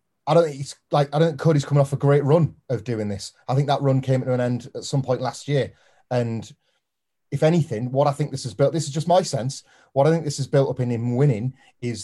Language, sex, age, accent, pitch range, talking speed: English, male, 30-49, British, 110-135 Hz, 275 wpm